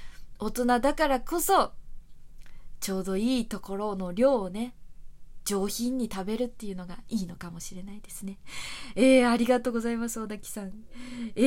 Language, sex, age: Japanese, female, 20-39